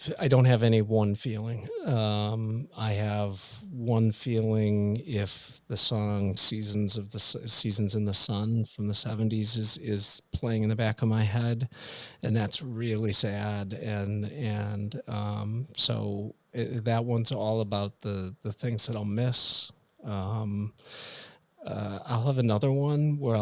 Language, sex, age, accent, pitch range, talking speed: English, male, 40-59, American, 100-115 Hz, 150 wpm